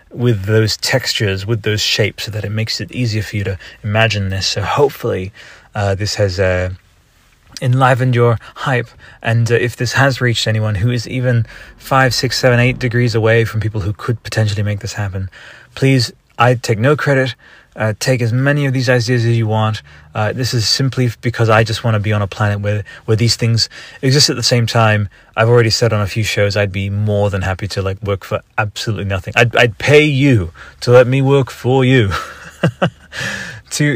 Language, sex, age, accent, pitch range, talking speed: English, male, 20-39, British, 105-130 Hz, 205 wpm